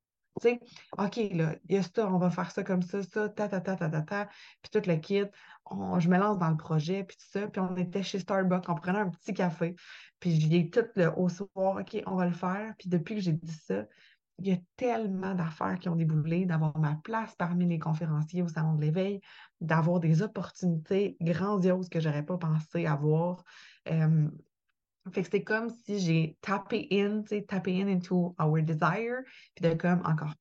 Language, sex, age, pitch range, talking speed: French, female, 20-39, 160-200 Hz, 215 wpm